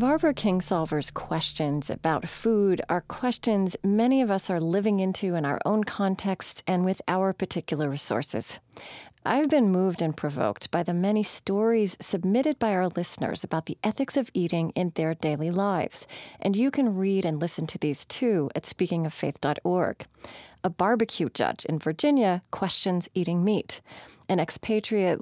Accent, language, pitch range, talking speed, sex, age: American, English, 160-210 Hz, 155 wpm, female, 30-49